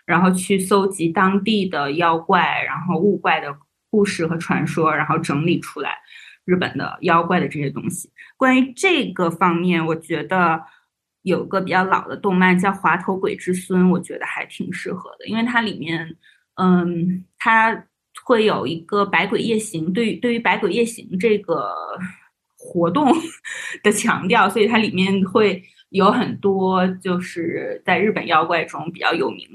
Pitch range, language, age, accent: 175-210 Hz, Chinese, 20-39, native